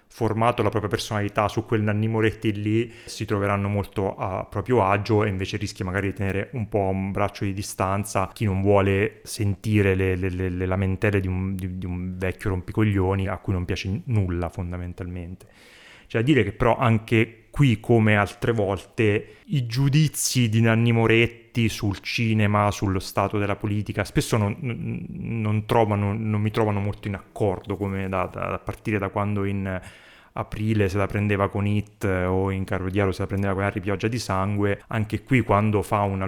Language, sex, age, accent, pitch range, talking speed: Italian, male, 30-49, native, 100-110 Hz, 180 wpm